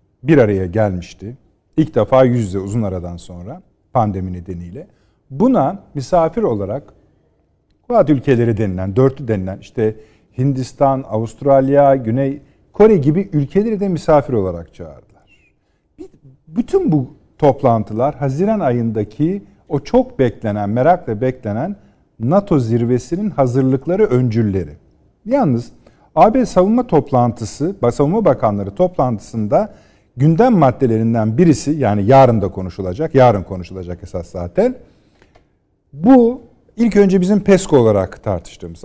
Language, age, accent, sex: Turkish, 50-69, native, male